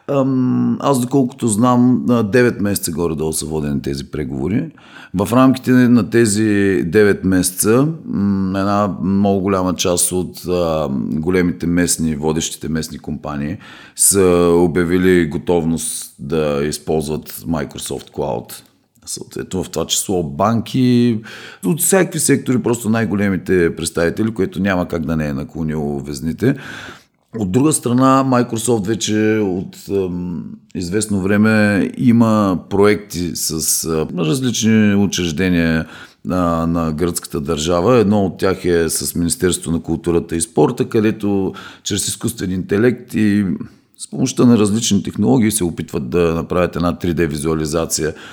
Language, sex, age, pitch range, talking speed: Bulgarian, male, 40-59, 85-120 Hz, 125 wpm